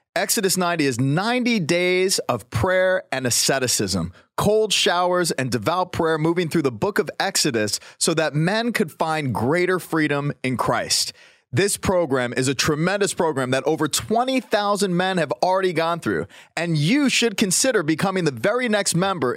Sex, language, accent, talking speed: male, English, American, 160 wpm